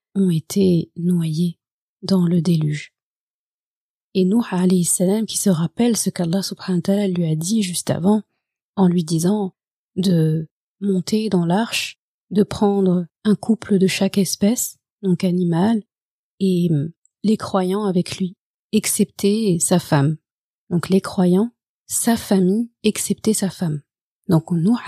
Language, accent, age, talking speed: French, French, 30-49, 135 wpm